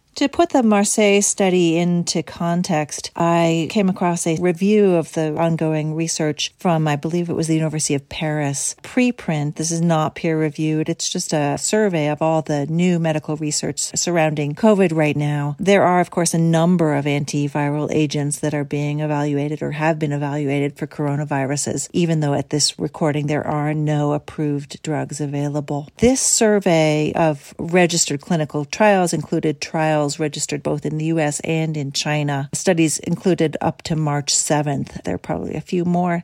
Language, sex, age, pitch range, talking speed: English, female, 40-59, 150-175 Hz, 170 wpm